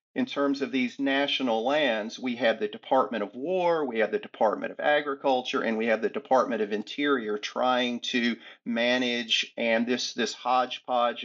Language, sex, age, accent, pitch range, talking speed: English, male, 50-69, American, 115-135 Hz, 170 wpm